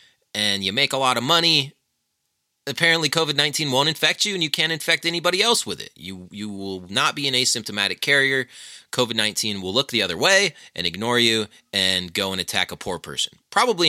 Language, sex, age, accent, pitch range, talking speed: English, male, 30-49, American, 105-165 Hz, 195 wpm